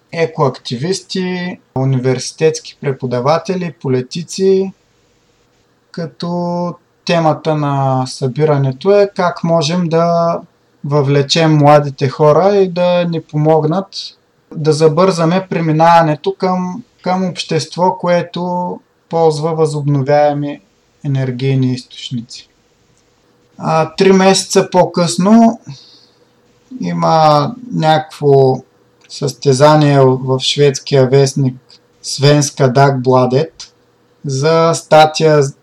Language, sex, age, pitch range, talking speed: Bulgarian, male, 30-49, 135-175 Hz, 75 wpm